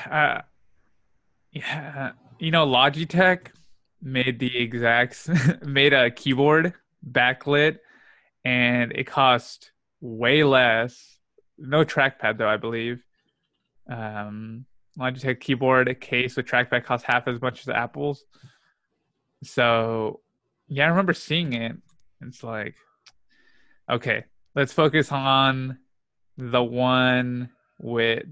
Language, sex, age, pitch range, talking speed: English, male, 20-39, 120-145 Hz, 105 wpm